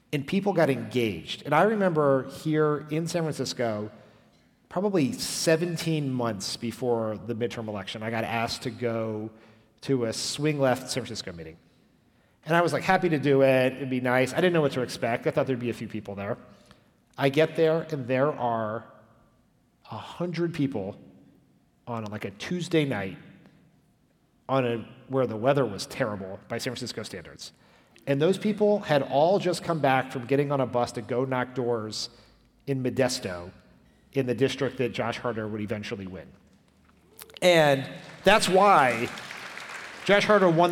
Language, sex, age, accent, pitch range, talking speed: English, male, 40-59, American, 115-150 Hz, 170 wpm